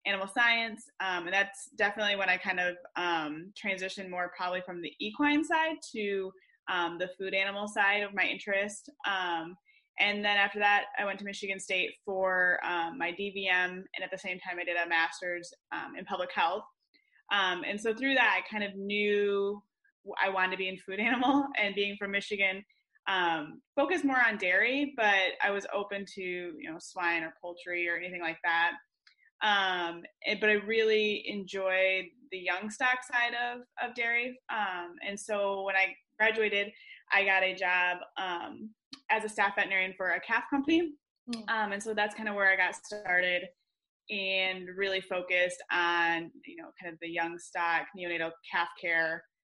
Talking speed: 180 wpm